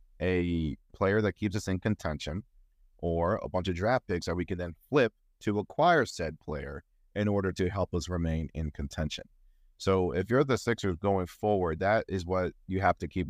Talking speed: 200 wpm